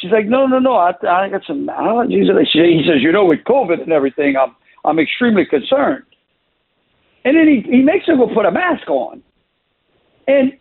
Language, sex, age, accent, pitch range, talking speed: English, male, 60-79, American, 205-275 Hz, 190 wpm